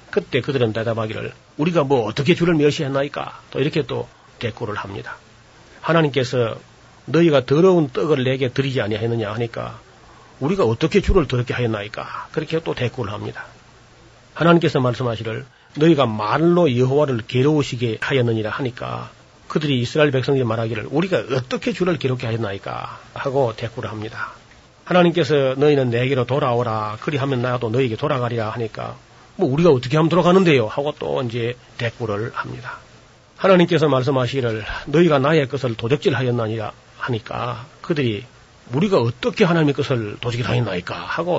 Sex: male